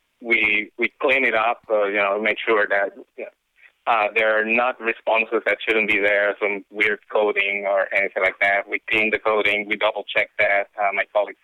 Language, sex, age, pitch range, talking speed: English, male, 30-49, 110-125 Hz, 195 wpm